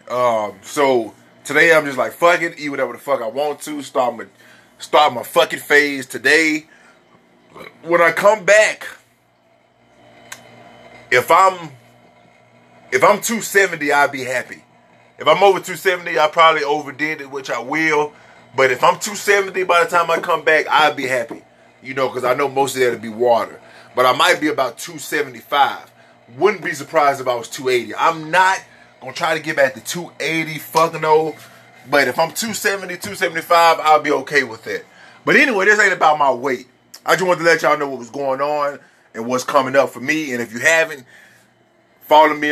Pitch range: 130-165 Hz